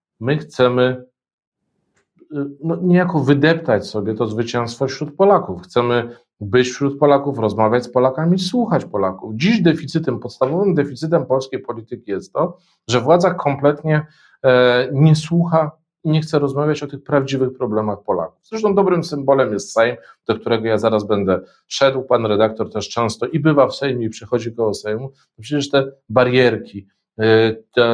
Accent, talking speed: native, 145 wpm